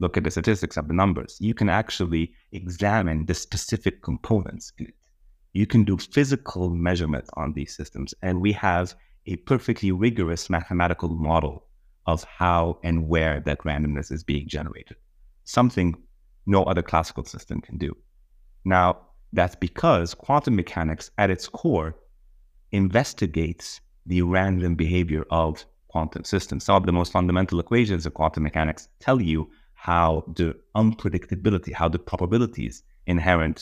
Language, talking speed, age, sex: English, 145 wpm, 30-49, male